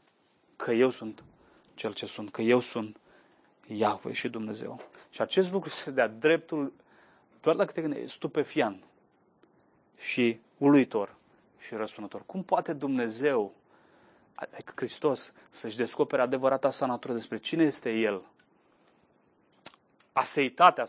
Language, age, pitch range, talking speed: Romanian, 30-49, 115-140 Hz, 120 wpm